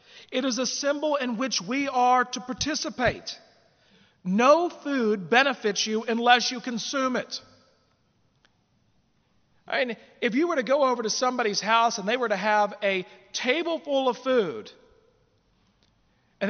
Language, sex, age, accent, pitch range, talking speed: English, male, 40-59, American, 220-270 Hz, 140 wpm